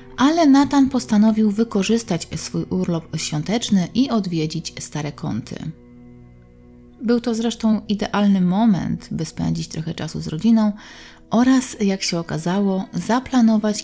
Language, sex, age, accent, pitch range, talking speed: Polish, female, 30-49, native, 160-225 Hz, 115 wpm